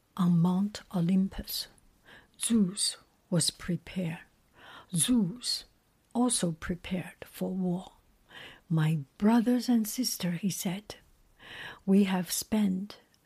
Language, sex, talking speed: English, female, 90 wpm